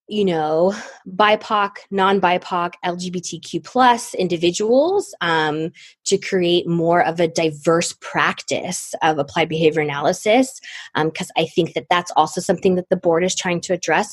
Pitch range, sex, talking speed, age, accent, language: 165-200 Hz, female, 145 wpm, 20-39, American, English